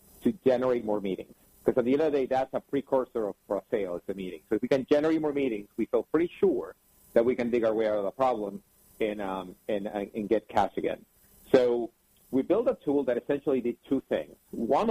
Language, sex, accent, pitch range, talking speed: English, male, American, 110-145 Hz, 230 wpm